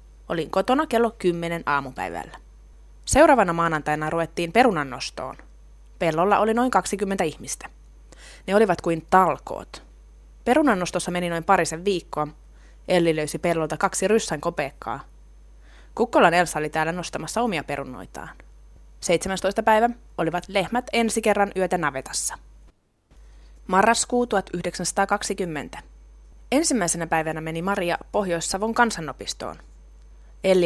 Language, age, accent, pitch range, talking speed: Finnish, 20-39, native, 140-195 Hz, 105 wpm